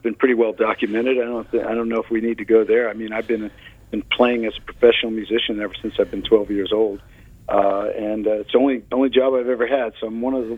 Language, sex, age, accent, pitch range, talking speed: English, male, 50-69, American, 115-135 Hz, 280 wpm